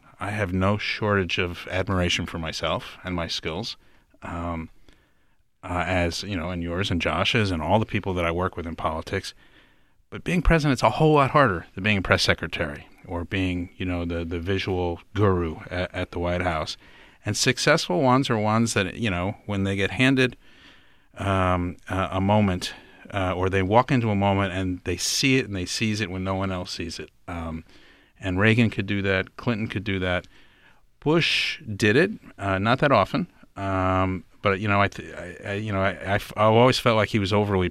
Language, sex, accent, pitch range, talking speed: English, male, American, 90-110 Hz, 200 wpm